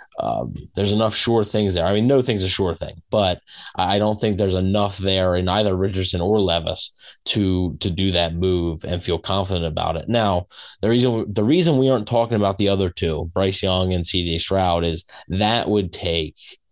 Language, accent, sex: English, American, male